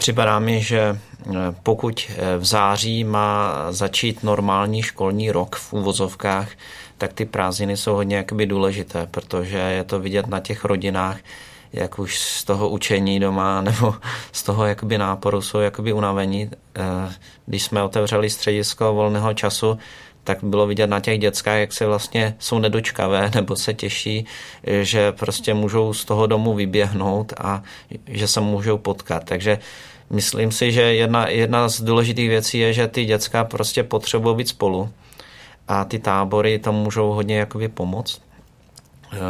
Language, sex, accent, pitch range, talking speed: Czech, male, native, 95-110 Hz, 150 wpm